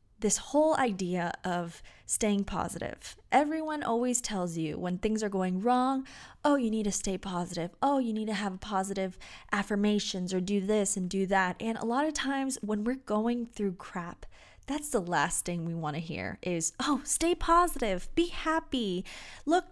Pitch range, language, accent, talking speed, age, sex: 185-250 Hz, English, American, 180 wpm, 20-39, female